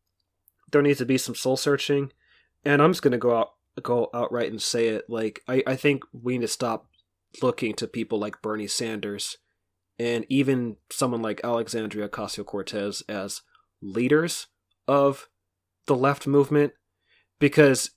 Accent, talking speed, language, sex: American, 150 wpm, English, male